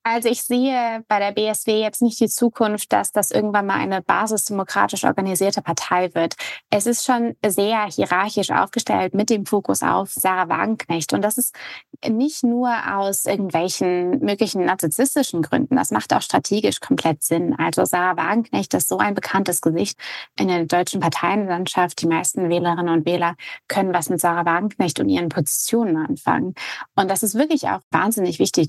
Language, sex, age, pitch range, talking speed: German, female, 20-39, 175-230 Hz, 165 wpm